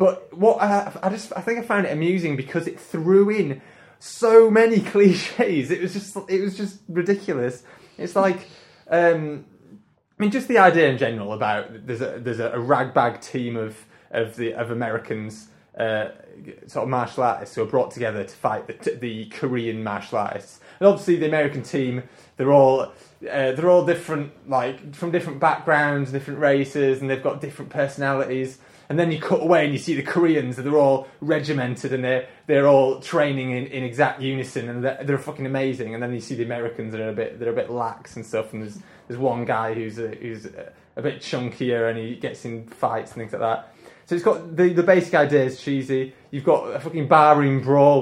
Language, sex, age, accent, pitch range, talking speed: English, male, 20-39, British, 120-170 Hz, 205 wpm